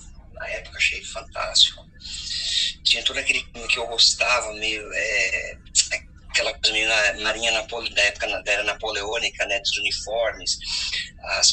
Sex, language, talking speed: male, Portuguese, 150 wpm